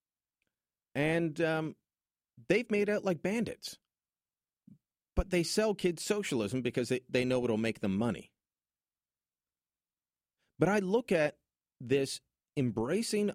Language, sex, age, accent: English, male, 40-59, American